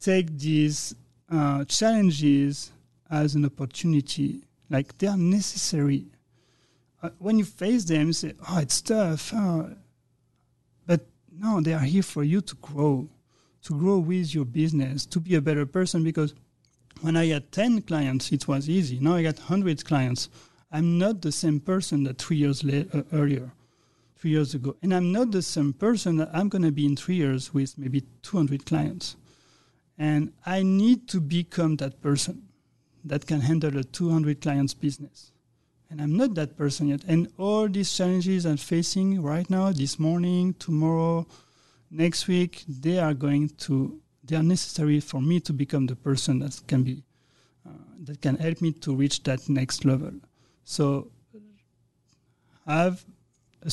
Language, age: English, 40-59